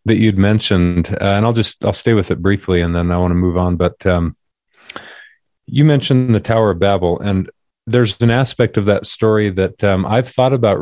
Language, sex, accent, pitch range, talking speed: English, male, American, 95-115 Hz, 215 wpm